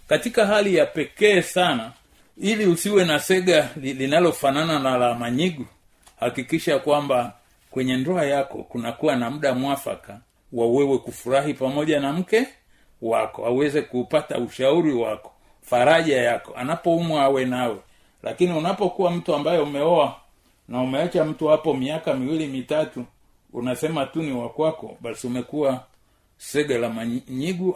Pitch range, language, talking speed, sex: 125-175 Hz, Swahili, 130 wpm, male